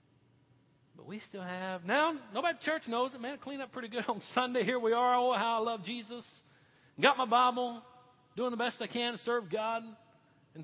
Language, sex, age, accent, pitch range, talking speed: English, male, 40-59, American, 125-190 Hz, 220 wpm